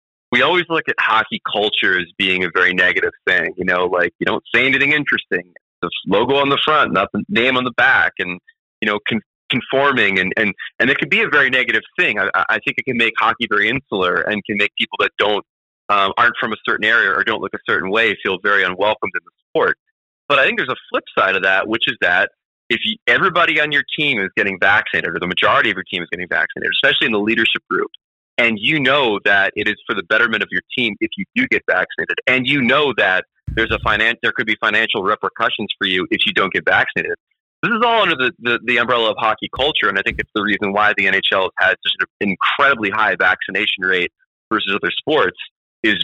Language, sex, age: English, male, 30-49